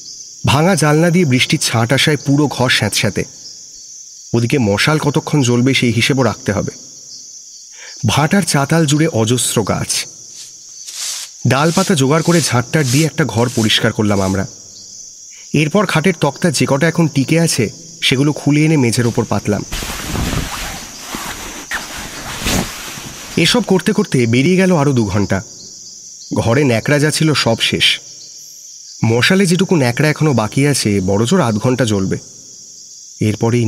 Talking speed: 130 wpm